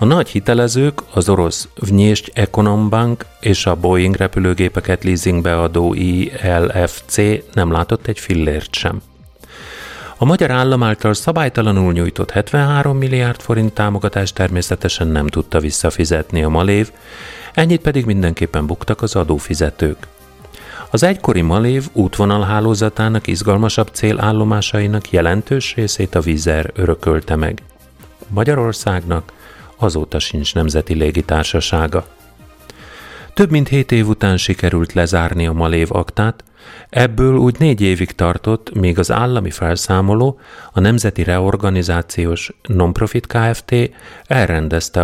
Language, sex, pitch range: Hungarian, male, 85-110 Hz